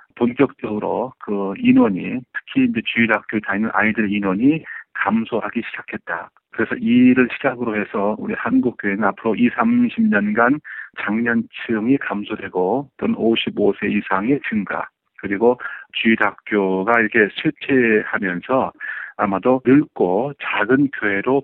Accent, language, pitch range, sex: native, Korean, 110-145 Hz, male